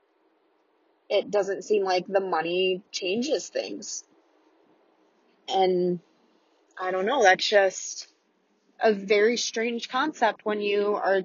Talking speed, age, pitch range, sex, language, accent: 110 wpm, 20-39, 195-235 Hz, female, English, American